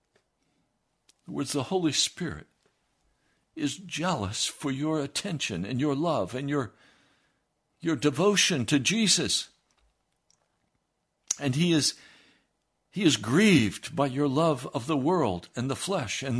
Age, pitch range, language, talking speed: 60-79, 100-145 Hz, English, 130 wpm